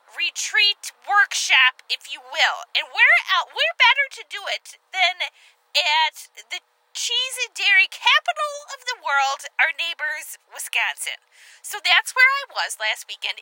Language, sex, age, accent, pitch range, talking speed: English, female, 20-39, American, 275-420 Hz, 150 wpm